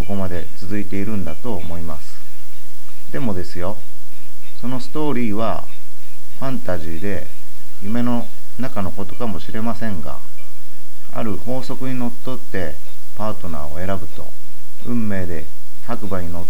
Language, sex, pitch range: Japanese, male, 100-115 Hz